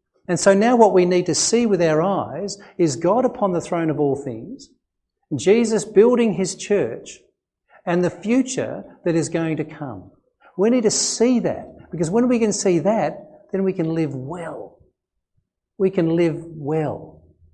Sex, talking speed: male, 175 wpm